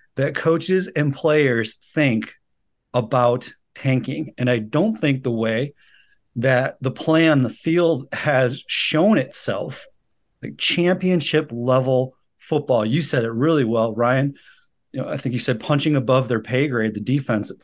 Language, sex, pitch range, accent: English, male, 125-155 Hz, American